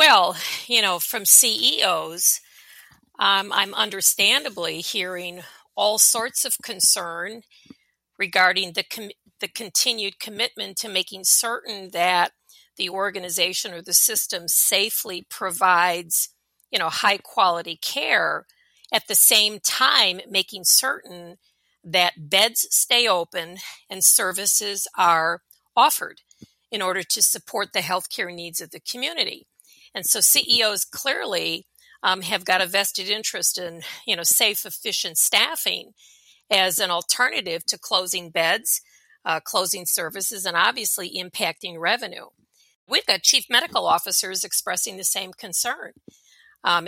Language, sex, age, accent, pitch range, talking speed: English, female, 50-69, American, 180-225 Hz, 125 wpm